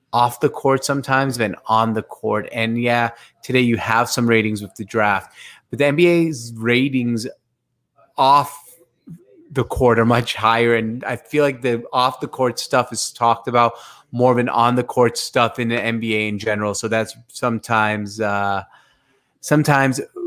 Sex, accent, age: male, American, 30-49